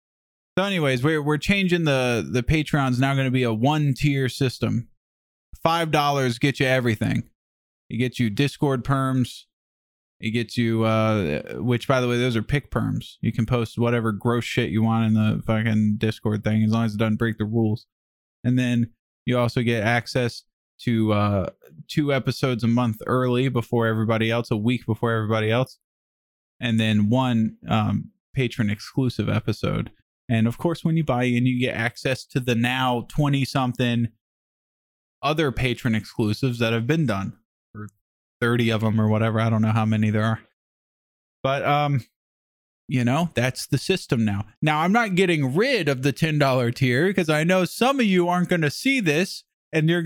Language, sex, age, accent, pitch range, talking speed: English, male, 20-39, American, 110-145 Hz, 185 wpm